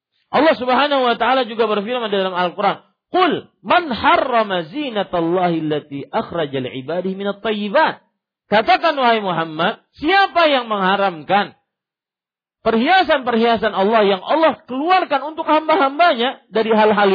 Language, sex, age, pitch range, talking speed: Malay, male, 50-69, 150-235 Hz, 115 wpm